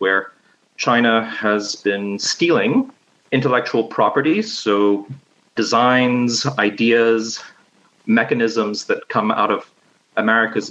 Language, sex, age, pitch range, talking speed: English, male, 30-49, 100-115 Hz, 90 wpm